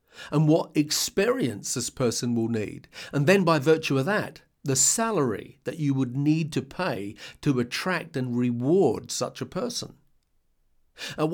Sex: male